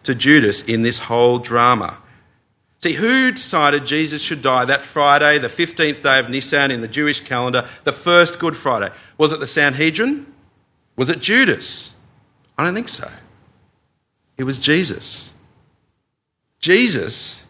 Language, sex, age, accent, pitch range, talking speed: English, male, 50-69, Australian, 115-150 Hz, 145 wpm